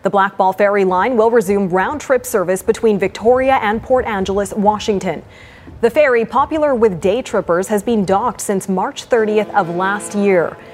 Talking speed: 160 wpm